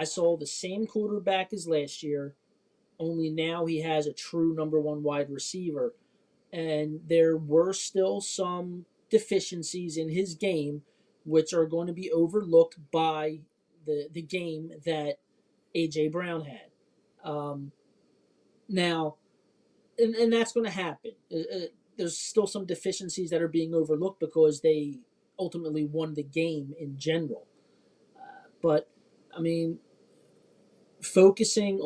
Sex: male